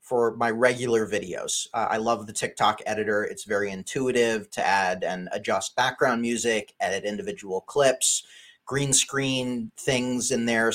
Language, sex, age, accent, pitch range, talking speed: English, male, 30-49, American, 105-125 Hz, 150 wpm